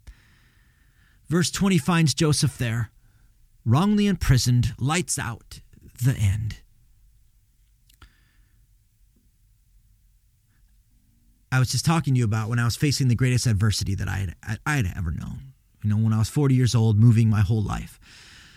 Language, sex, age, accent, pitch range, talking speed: English, male, 30-49, American, 105-125 Hz, 140 wpm